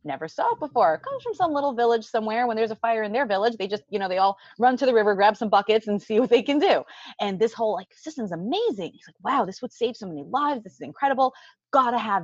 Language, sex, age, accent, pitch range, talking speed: English, female, 20-39, American, 190-290 Hz, 275 wpm